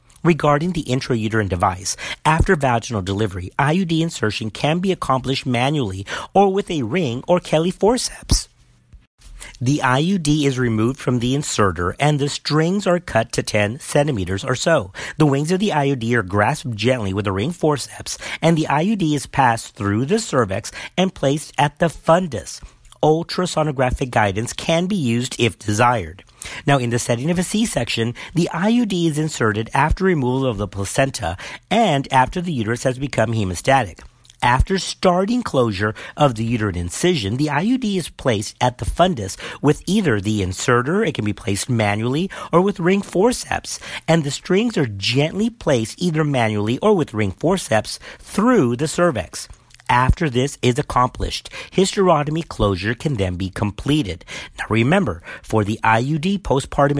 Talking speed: 160 wpm